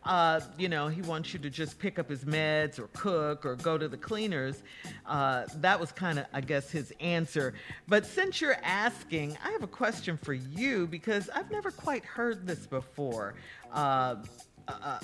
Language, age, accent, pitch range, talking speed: English, 50-69, American, 145-195 Hz, 185 wpm